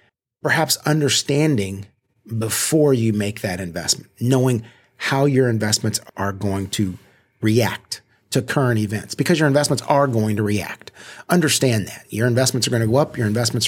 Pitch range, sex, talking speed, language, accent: 105-130 Hz, male, 160 wpm, English, American